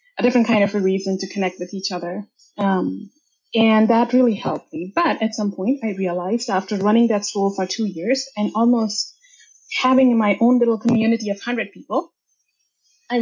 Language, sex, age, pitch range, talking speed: English, female, 20-39, 195-255 Hz, 185 wpm